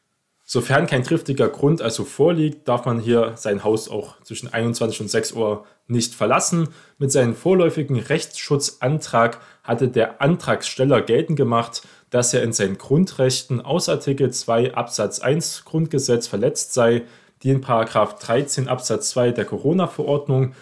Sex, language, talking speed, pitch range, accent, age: male, German, 145 wpm, 115-150 Hz, German, 20-39